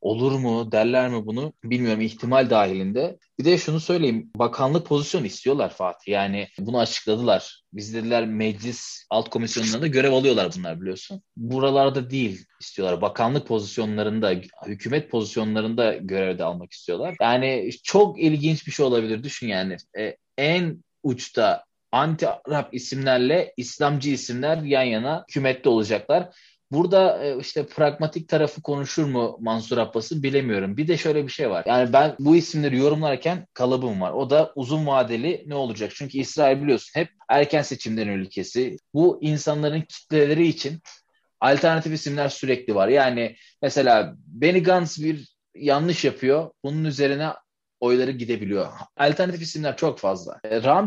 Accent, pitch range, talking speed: native, 115-155 Hz, 135 wpm